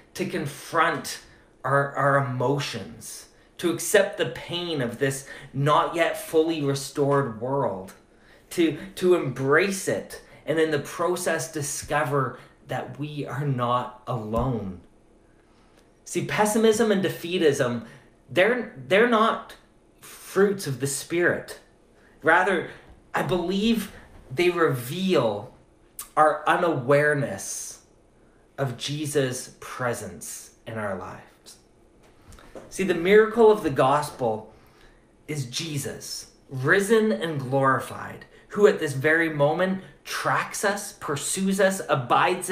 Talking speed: 105 wpm